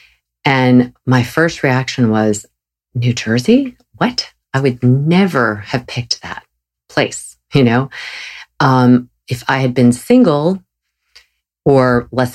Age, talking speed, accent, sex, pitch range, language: 40-59, 120 wpm, American, female, 110-135 Hz, English